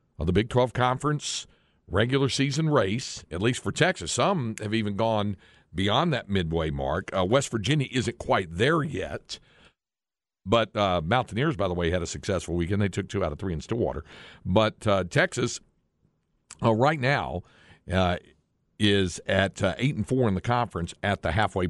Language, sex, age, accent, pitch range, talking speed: English, male, 60-79, American, 80-105 Hz, 175 wpm